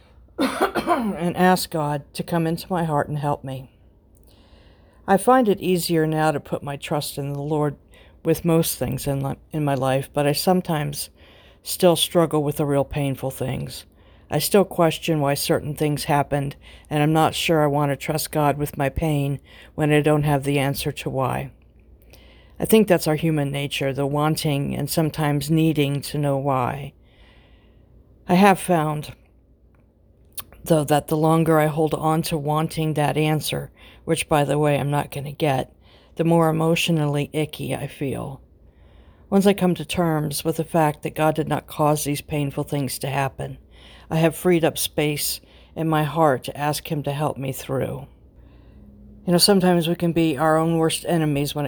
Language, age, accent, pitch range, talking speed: English, 60-79, American, 140-160 Hz, 180 wpm